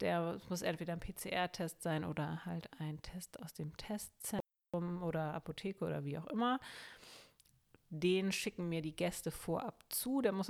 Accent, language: German, German